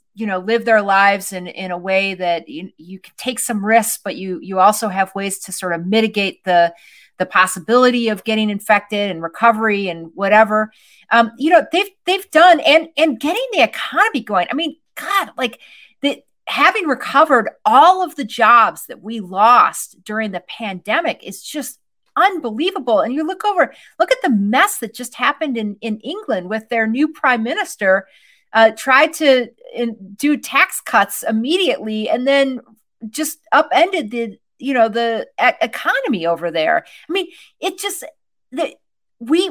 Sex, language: female, English